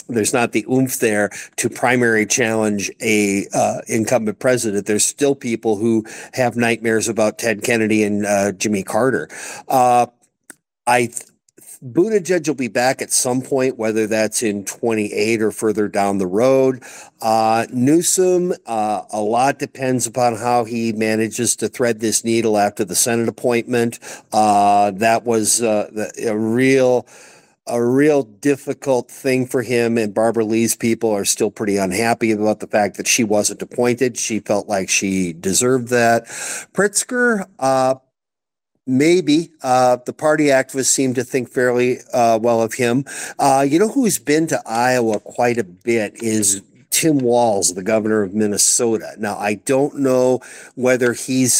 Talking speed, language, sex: 155 wpm, English, male